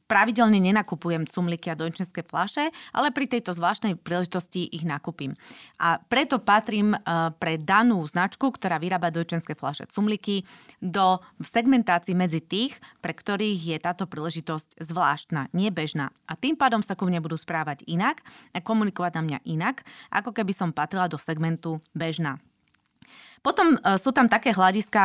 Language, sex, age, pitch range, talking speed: Slovak, female, 30-49, 170-240 Hz, 145 wpm